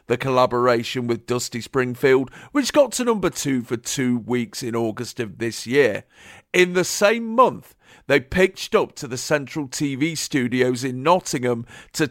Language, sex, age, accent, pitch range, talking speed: English, male, 50-69, British, 125-155 Hz, 165 wpm